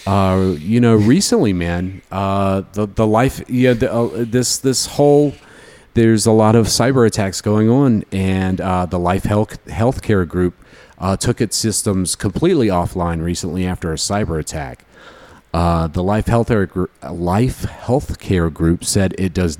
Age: 40-59